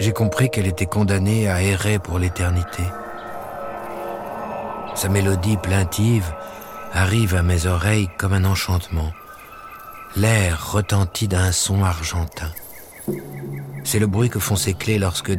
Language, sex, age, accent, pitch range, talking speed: French, male, 60-79, French, 80-105 Hz, 125 wpm